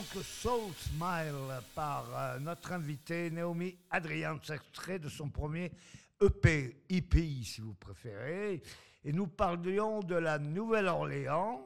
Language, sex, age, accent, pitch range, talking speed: French, male, 60-79, French, 140-175 Hz, 130 wpm